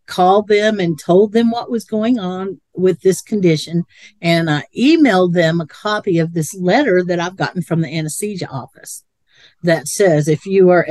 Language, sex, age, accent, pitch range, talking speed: English, female, 50-69, American, 175-215 Hz, 180 wpm